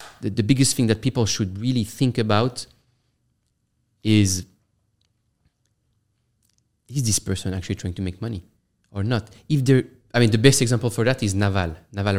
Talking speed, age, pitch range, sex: 160 wpm, 30-49, 100-125 Hz, male